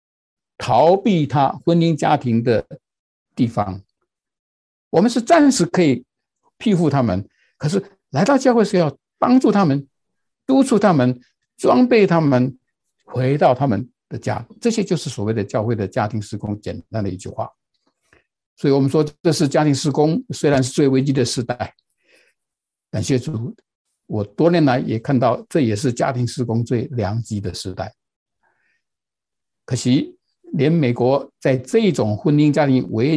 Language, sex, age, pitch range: Chinese, male, 60-79, 115-165 Hz